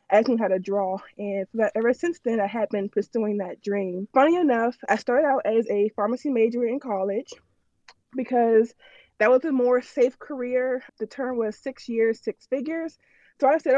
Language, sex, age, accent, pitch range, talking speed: English, female, 20-39, American, 210-255 Hz, 185 wpm